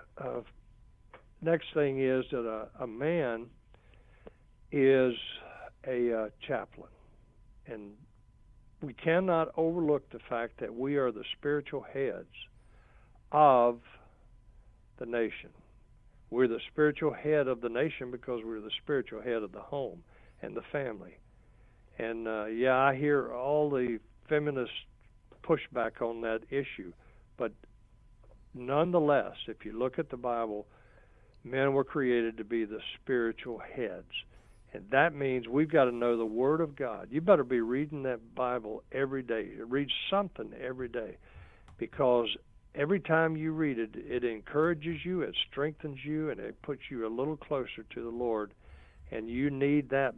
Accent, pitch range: American, 115-145 Hz